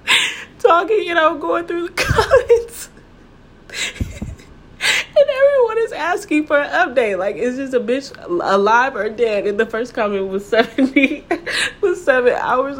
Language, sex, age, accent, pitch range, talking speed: English, female, 10-29, American, 200-315 Hz, 145 wpm